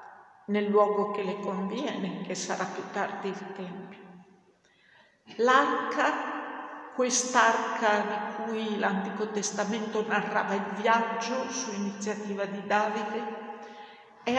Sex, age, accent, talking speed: female, 50-69, native, 105 wpm